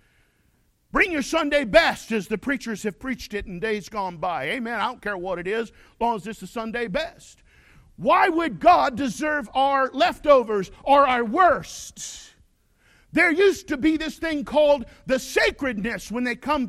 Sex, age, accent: male, 50-69, American